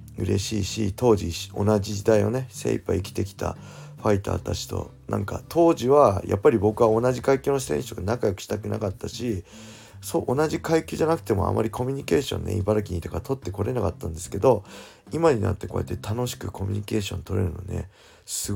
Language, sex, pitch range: Japanese, male, 95-120 Hz